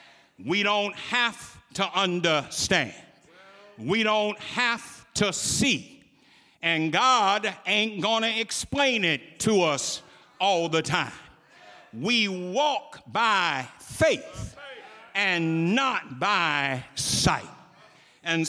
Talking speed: 100 wpm